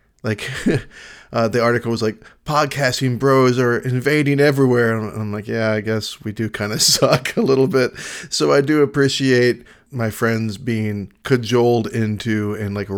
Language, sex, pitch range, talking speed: English, male, 105-120 Hz, 165 wpm